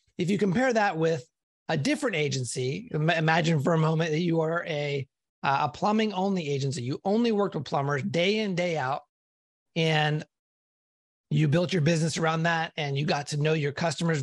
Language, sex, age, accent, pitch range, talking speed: English, male, 30-49, American, 145-185 Hz, 180 wpm